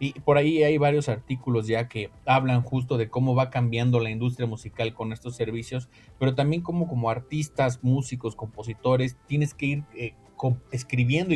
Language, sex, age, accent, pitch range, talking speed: Spanish, male, 30-49, Mexican, 115-140 Hz, 175 wpm